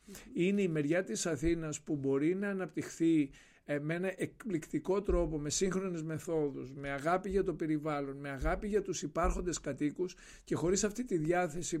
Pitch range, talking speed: 150-185 Hz, 170 wpm